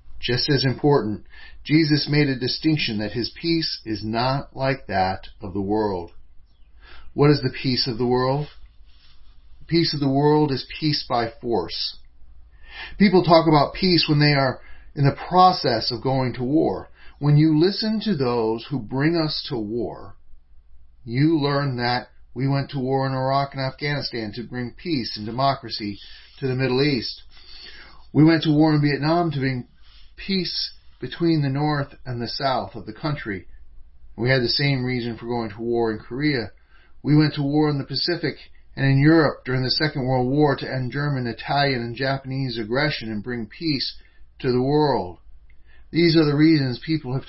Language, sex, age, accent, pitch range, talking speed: English, male, 40-59, American, 115-150 Hz, 180 wpm